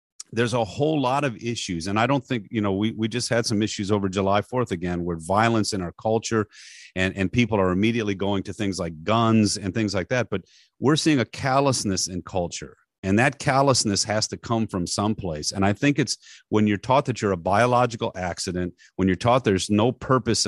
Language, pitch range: English, 95-120 Hz